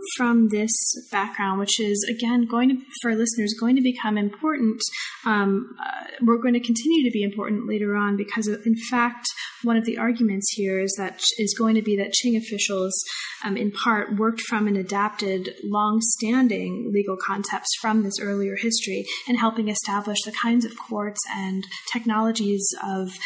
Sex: female